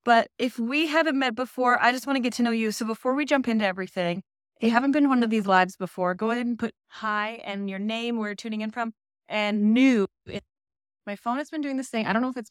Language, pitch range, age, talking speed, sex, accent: English, 200-275 Hz, 20-39, 275 wpm, female, American